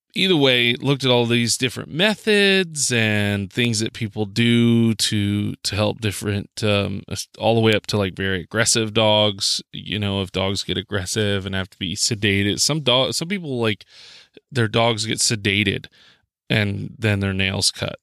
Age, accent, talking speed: 20-39, American, 175 wpm